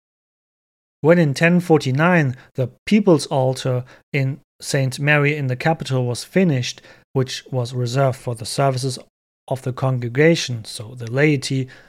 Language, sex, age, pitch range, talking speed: English, male, 30-49, 130-160 Hz, 130 wpm